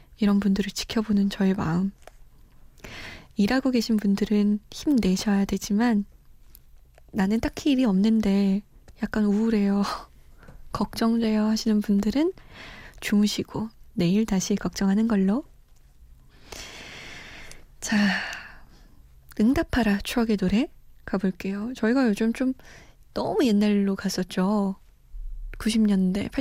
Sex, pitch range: female, 200-270 Hz